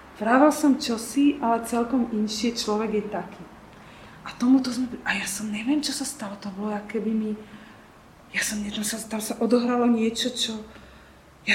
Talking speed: 165 wpm